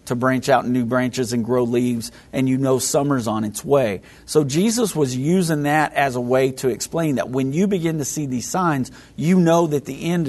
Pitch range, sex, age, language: 120-145 Hz, male, 50-69, English